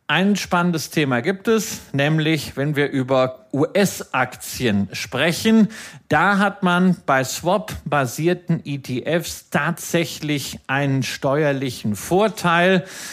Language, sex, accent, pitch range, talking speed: German, male, German, 130-170 Hz, 95 wpm